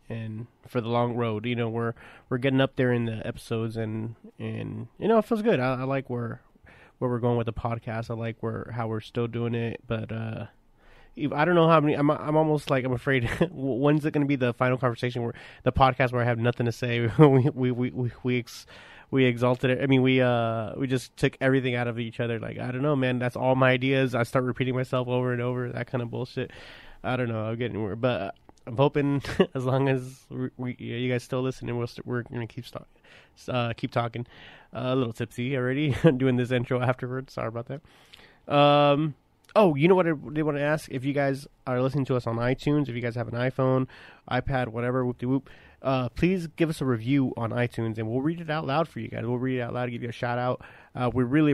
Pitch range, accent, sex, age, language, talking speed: 120-135 Hz, American, male, 20-39, English, 245 wpm